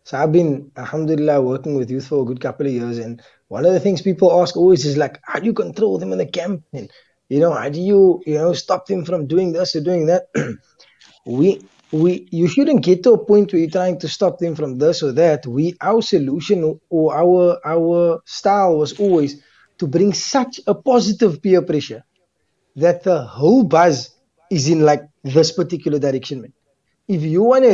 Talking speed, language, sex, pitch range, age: 205 wpm, English, male, 150-190 Hz, 20-39